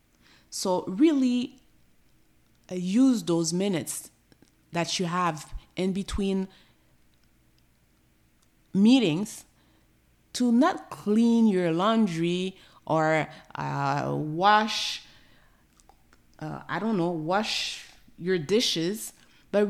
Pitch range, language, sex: 160-220 Hz, English, female